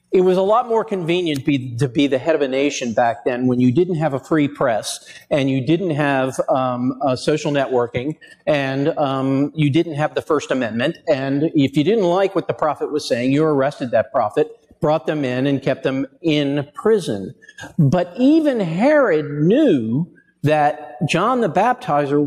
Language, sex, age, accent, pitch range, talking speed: English, male, 50-69, American, 125-170 Hz, 180 wpm